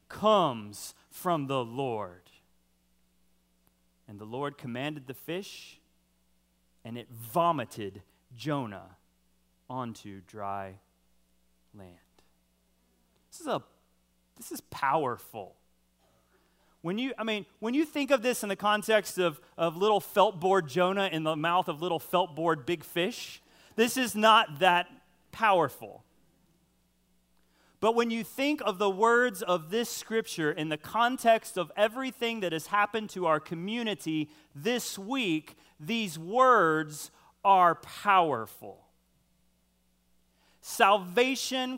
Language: English